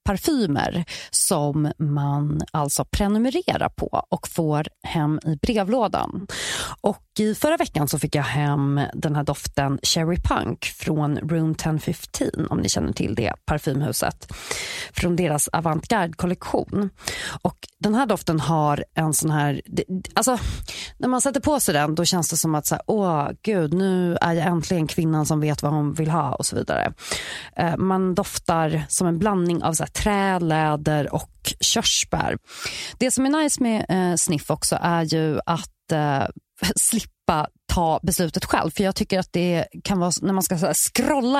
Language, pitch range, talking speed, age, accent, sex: English, 155-200 Hz, 160 wpm, 30-49, Swedish, female